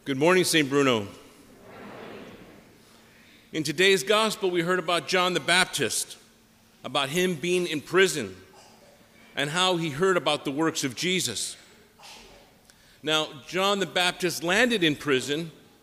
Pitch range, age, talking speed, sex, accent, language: 140-180 Hz, 50-69, 130 wpm, male, American, English